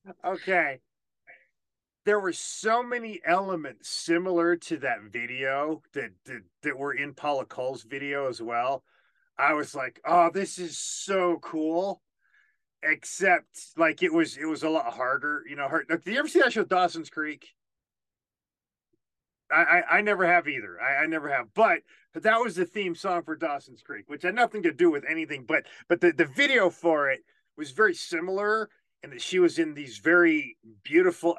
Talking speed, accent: 180 wpm, American